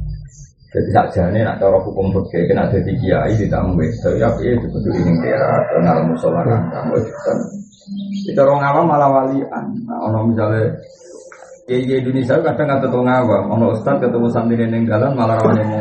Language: Indonesian